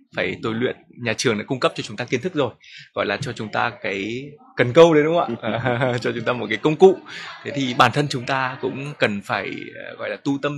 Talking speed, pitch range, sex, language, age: 265 wpm, 115-150 Hz, male, Vietnamese, 20-39